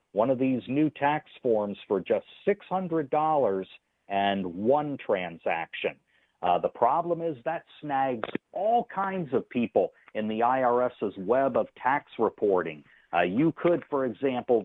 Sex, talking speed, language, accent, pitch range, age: male, 140 wpm, English, American, 115-165 Hz, 50-69